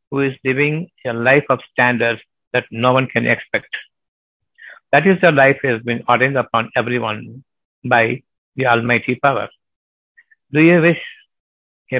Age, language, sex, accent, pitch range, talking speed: 60-79, Tamil, male, native, 120-140 Hz, 145 wpm